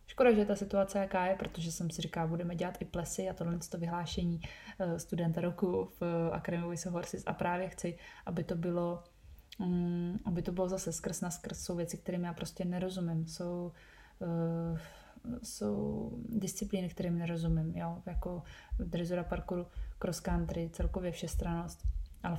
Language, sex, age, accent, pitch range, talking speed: Czech, female, 20-39, native, 165-185 Hz, 150 wpm